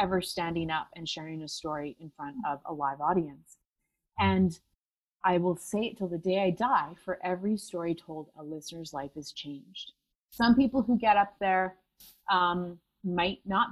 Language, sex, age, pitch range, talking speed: English, female, 30-49, 165-220 Hz, 180 wpm